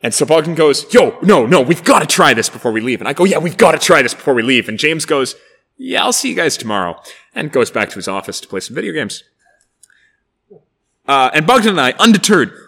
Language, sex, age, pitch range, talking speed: English, male, 20-39, 115-180 Hz, 250 wpm